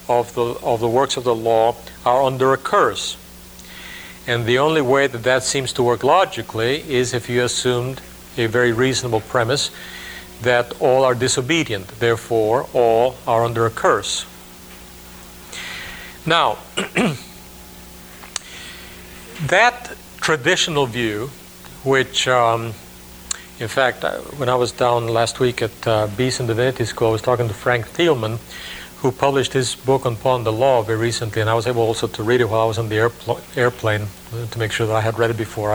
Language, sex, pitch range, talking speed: English, male, 110-125 Hz, 165 wpm